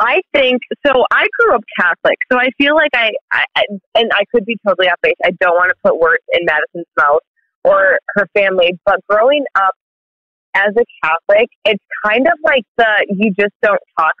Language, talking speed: English, 205 wpm